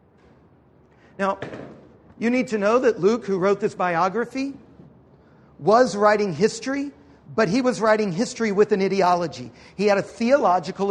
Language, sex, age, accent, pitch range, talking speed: English, male, 50-69, American, 185-230 Hz, 145 wpm